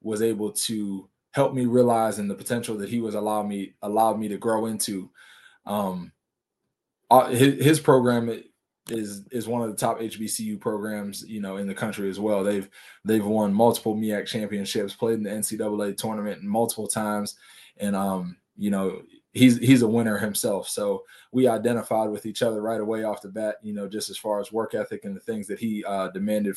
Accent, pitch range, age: American, 100-115 Hz, 20-39